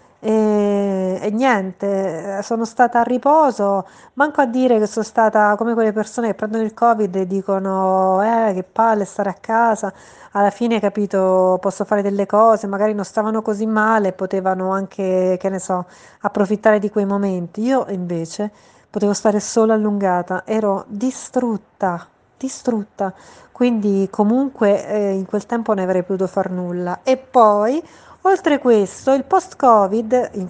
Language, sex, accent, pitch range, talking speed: Italian, female, native, 195-225 Hz, 150 wpm